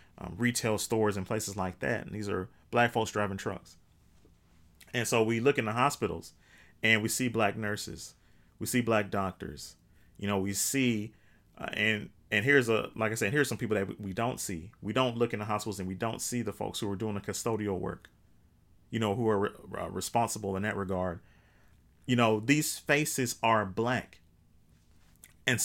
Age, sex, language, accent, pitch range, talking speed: 30-49, male, English, American, 95-120 Hz, 190 wpm